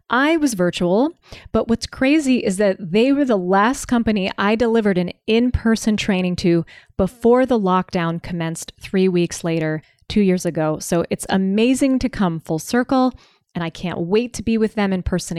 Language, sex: English, female